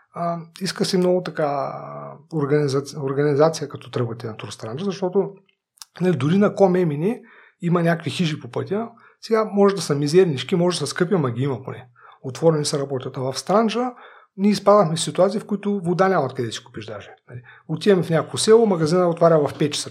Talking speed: 190 wpm